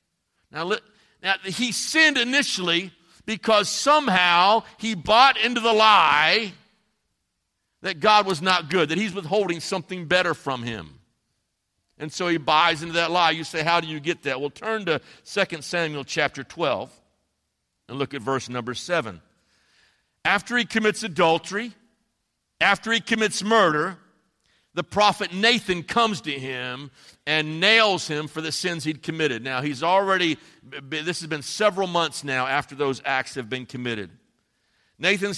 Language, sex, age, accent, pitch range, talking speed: English, male, 50-69, American, 155-215 Hz, 150 wpm